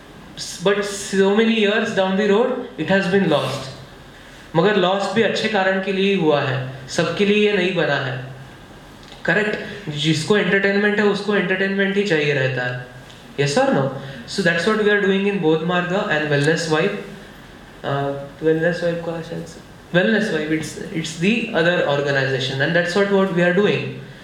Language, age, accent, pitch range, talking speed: English, 20-39, Indian, 150-195 Hz, 155 wpm